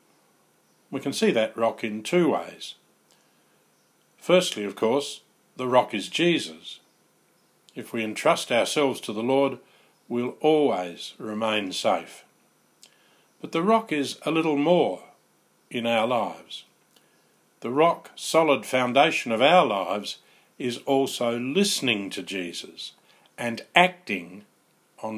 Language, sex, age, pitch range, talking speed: English, male, 50-69, 110-140 Hz, 120 wpm